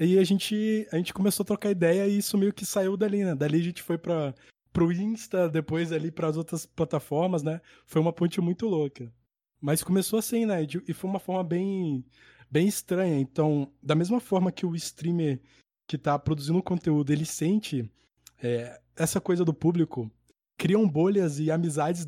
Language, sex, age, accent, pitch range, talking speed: Portuguese, male, 20-39, Brazilian, 145-180 Hz, 190 wpm